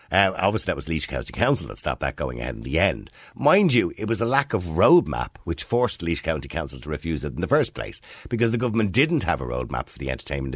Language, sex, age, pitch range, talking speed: English, male, 50-69, 70-100 Hz, 255 wpm